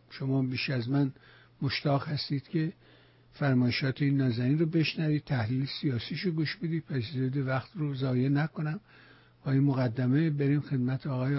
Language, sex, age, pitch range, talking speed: Persian, male, 60-79, 125-150 Hz, 150 wpm